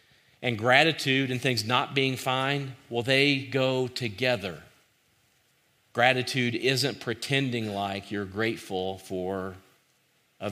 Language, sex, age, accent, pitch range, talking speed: English, male, 40-59, American, 115-145 Hz, 110 wpm